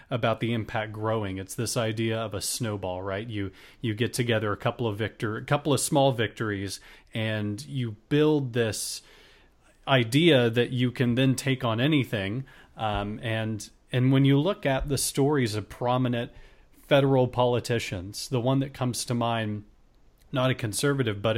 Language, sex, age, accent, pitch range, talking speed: English, male, 30-49, American, 110-130 Hz, 165 wpm